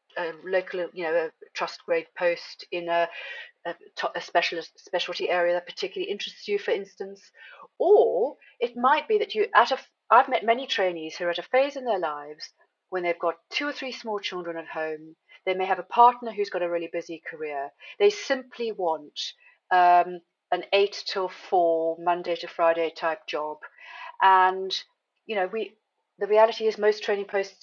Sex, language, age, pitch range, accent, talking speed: female, English, 40-59, 180-250 Hz, British, 185 wpm